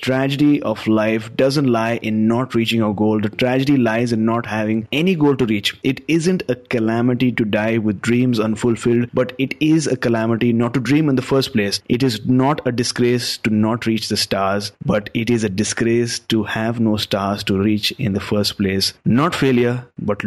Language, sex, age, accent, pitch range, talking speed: English, male, 30-49, Indian, 110-130 Hz, 205 wpm